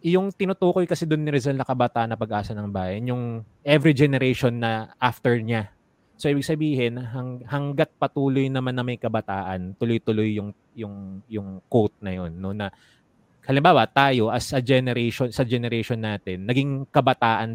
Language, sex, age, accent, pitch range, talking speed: Filipino, male, 20-39, native, 100-120 Hz, 155 wpm